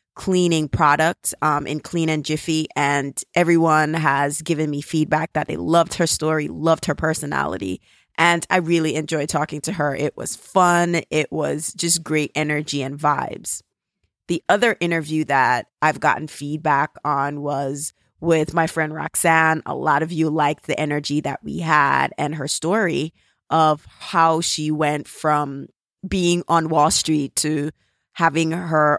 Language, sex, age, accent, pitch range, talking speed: English, female, 20-39, American, 145-165 Hz, 155 wpm